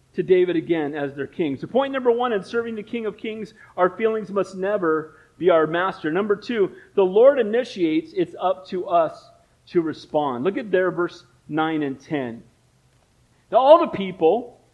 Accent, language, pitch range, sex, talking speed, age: American, English, 185-280 Hz, male, 185 wpm, 40-59